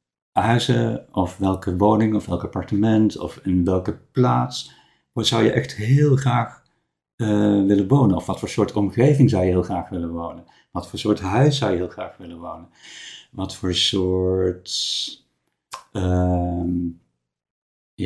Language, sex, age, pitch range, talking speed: Dutch, male, 50-69, 95-135 Hz, 150 wpm